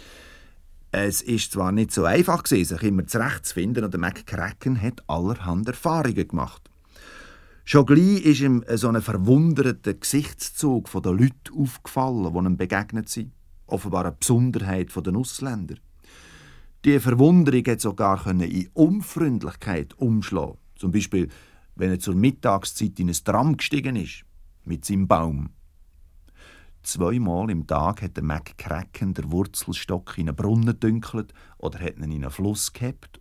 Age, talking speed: 50-69, 145 wpm